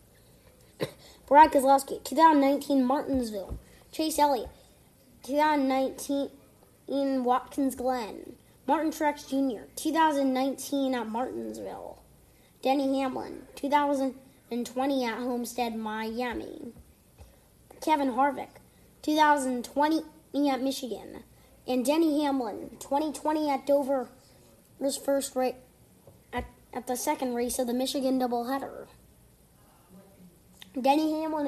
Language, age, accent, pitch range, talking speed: English, 20-39, American, 250-300 Hz, 90 wpm